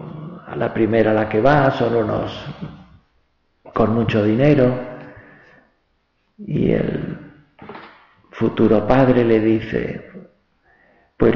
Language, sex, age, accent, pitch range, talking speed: Spanish, male, 50-69, Spanish, 110-150 Hz, 95 wpm